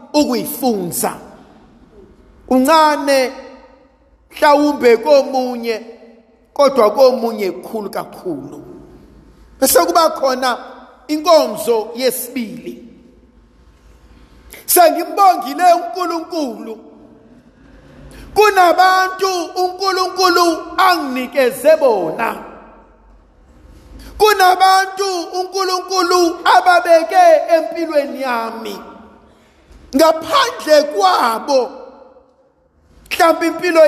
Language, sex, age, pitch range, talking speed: English, male, 50-69, 255-335 Hz, 60 wpm